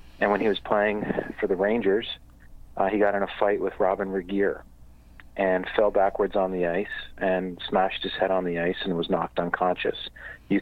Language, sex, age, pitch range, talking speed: English, male, 40-59, 80-100 Hz, 200 wpm